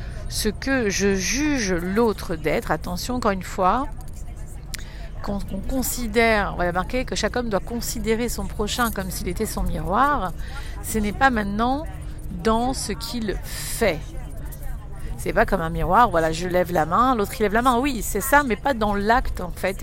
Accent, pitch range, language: French, 185-250 Hz, French